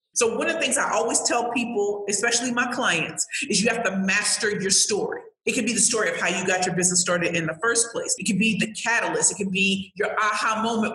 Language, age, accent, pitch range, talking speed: English, 40-59, American, 200-250 Hz, 250 wpm